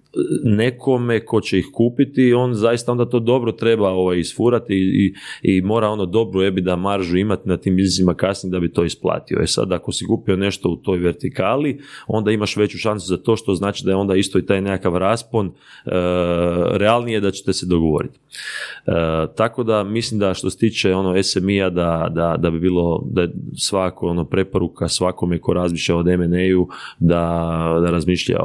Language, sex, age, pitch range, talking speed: Croatian, male, 30-49, 85-105 Hz, 190 wpm